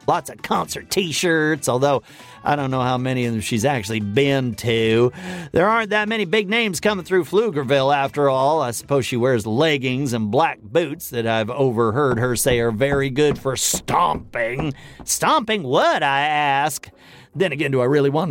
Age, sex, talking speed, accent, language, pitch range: 40-59, male, 180 wpm, American, English, 125-190 Hz